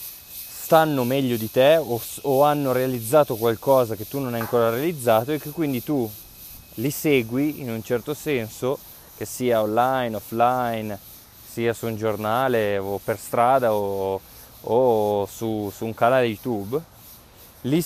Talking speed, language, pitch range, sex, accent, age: 150 wpm, Italian, 110-145 Hz, male, native, 20-39